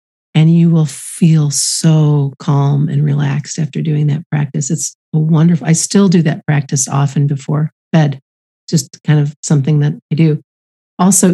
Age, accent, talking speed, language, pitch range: 50-69, American, 165 wpm, English, 150-170 Hz